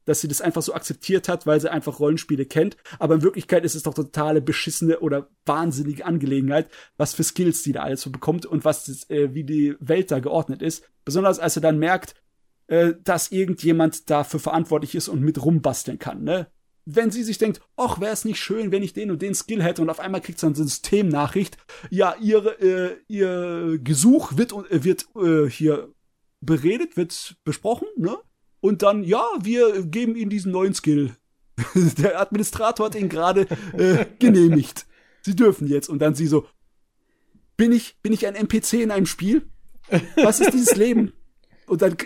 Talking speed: 185 wpm